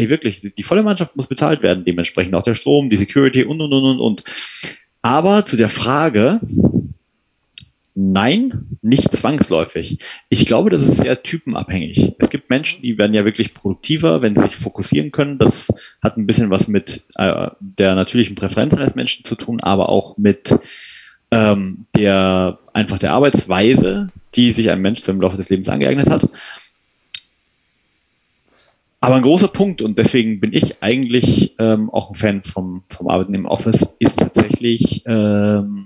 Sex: male